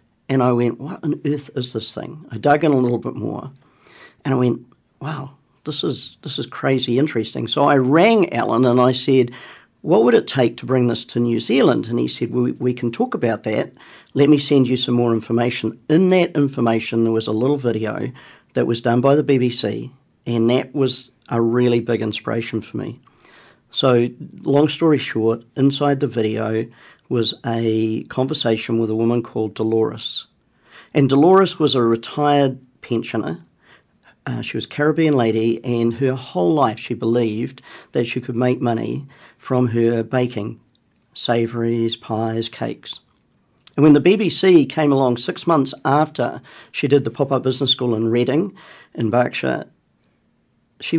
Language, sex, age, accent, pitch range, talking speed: English, male, 50-69, Australian, 115-140 Hz, 170 wpm